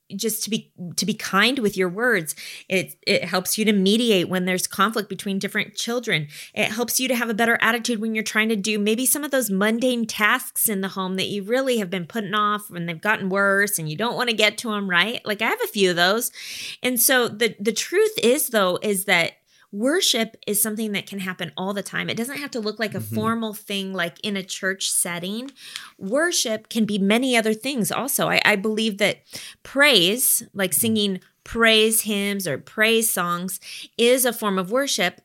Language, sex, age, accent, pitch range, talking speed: English, female, 20-39, American, 190-230 Hz, 215 wpm